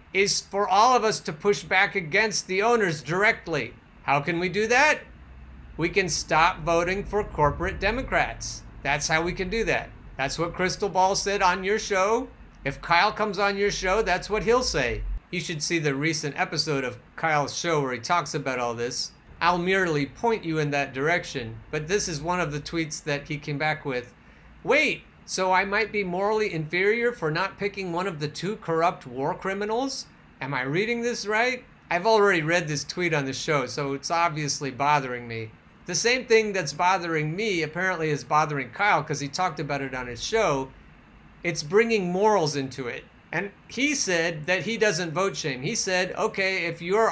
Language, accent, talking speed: English, American, 195 wpm